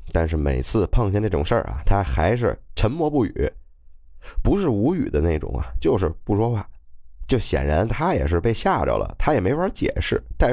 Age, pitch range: 20-39, 65-100 Hz